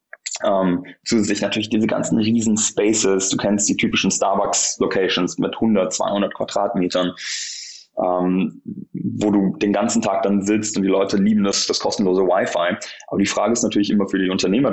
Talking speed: 165 wpm